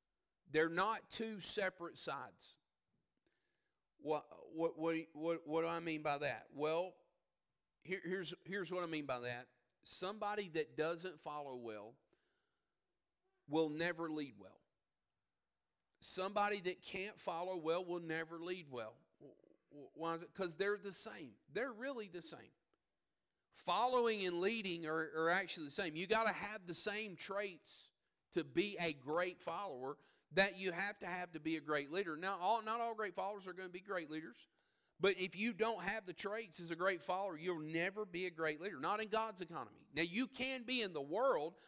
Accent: American